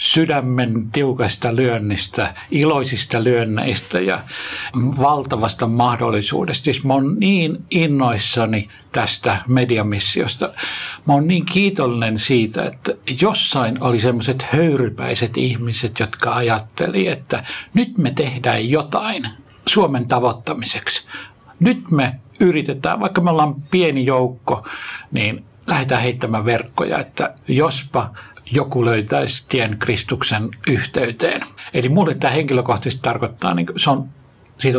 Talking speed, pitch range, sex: 105 wpm, 120-150 Hz, male